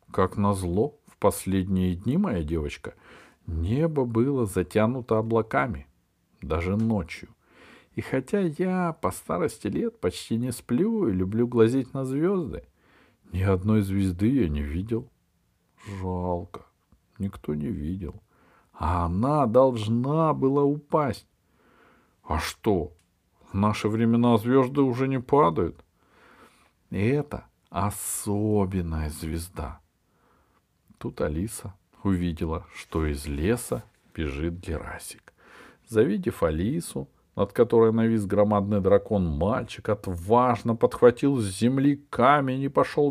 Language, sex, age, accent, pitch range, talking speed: Russian, male, 50-69, native, 90-125 Hz, 105 wpm